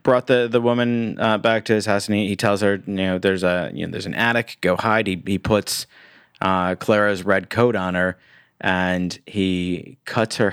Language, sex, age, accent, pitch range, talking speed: English, male, 30-49, American, 90-110 Hz, 215 wpm